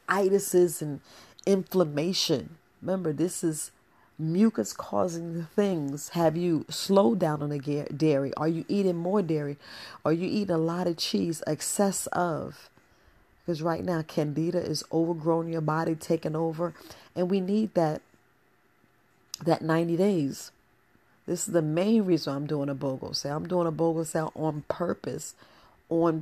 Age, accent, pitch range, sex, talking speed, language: 40-59, American, 155-180 Hz, female, 150 wpm, English